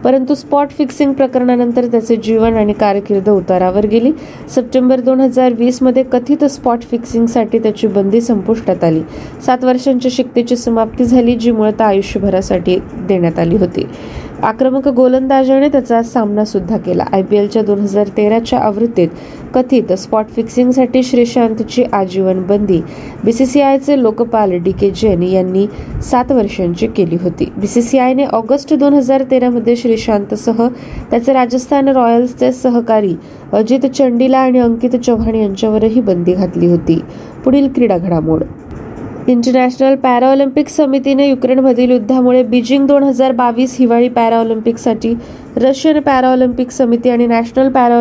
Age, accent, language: 20-39, native, Marathi